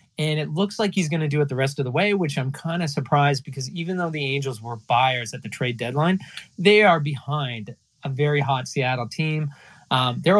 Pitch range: 130-165 Hz